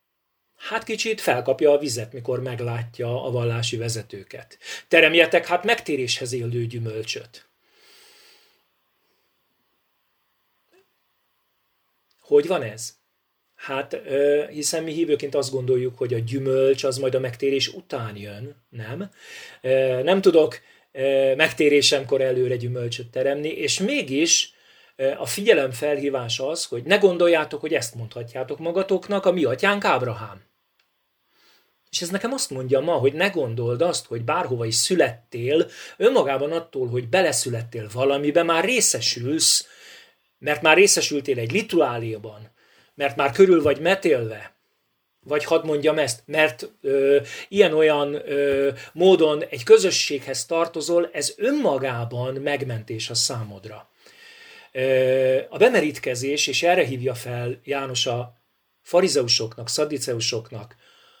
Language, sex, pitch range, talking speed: Hungarian, male, 125-170 Hz, 115 wpm